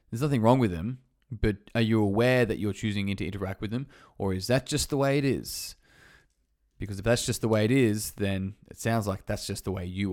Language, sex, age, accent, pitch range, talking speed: English, male, 20-39, Australian, 100-125 Hz, 245 wpm